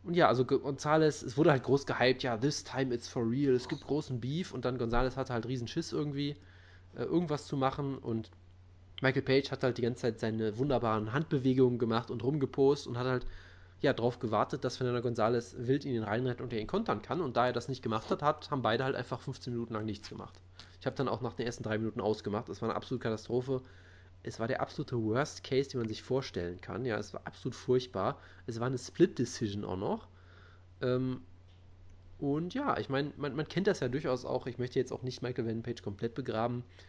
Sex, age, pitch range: male, 20-39, 105-135 Hz